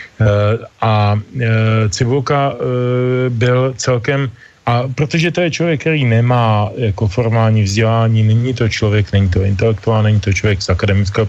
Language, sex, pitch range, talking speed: Slovak, male, 105-120 Hz, 145 wpm